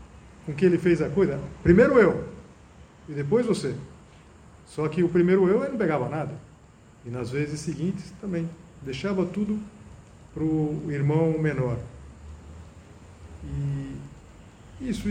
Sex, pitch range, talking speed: male, 125-190 Hz, 125 wpm